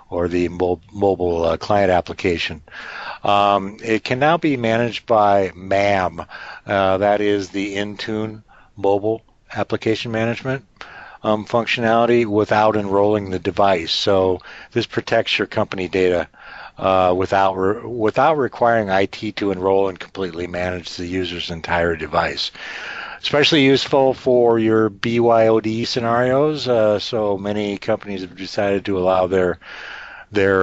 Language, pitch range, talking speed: English, 95-115 Hz, 130 wpm